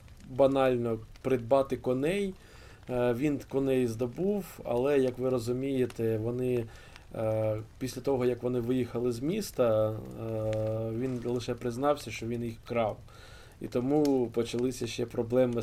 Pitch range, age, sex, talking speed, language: 110-130 Hz, 20-39, male, 115 wpm, Ukrainian